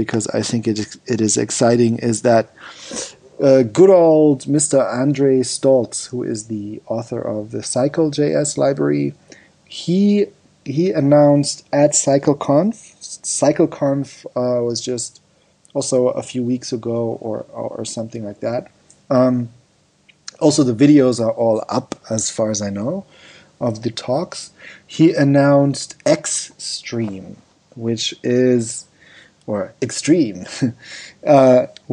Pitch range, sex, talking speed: 115-145 Hz, male, 125 wpm